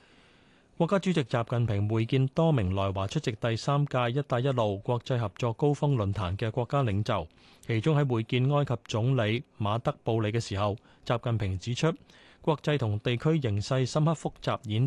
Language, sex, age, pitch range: Chinese, male, 30-49, 105-145 Hz